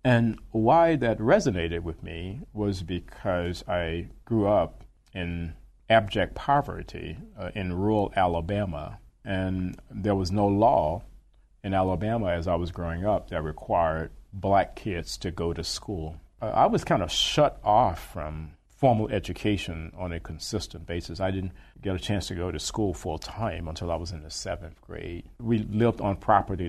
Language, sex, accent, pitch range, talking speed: English, male, American, 85-105 Hz, 165 wpm